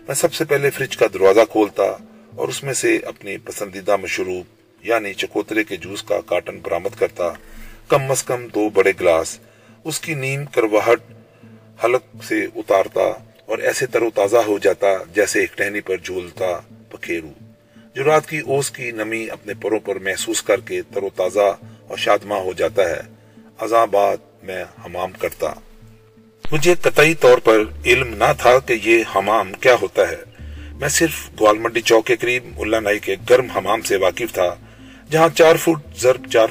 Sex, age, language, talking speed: male, 30-49, Urdu, 150 wpm